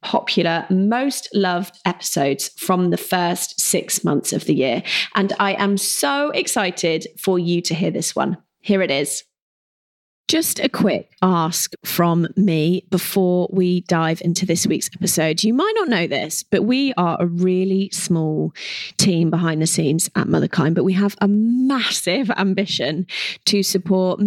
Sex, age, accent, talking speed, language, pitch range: female, 30-49, British, 160 wpm, English, 175-215 Hz